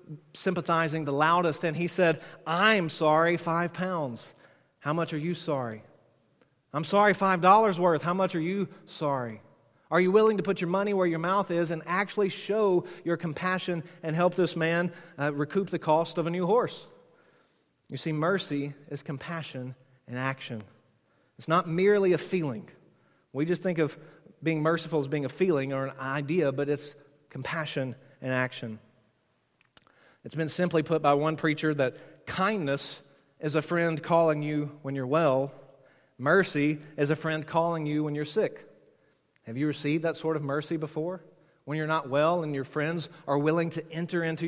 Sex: male